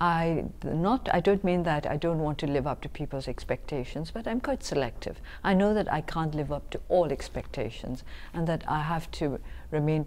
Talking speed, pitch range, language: 205 wpm, 140-195 Hz, English